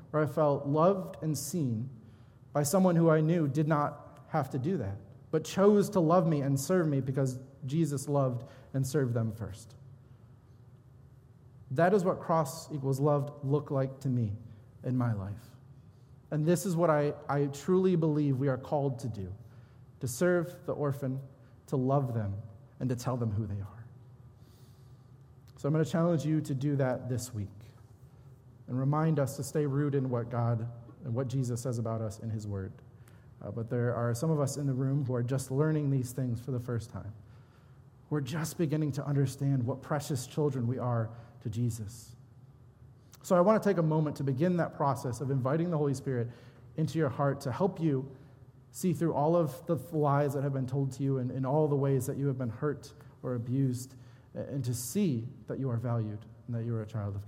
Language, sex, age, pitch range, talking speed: English, male, 30-49, 120-150 Hz, 200 wpm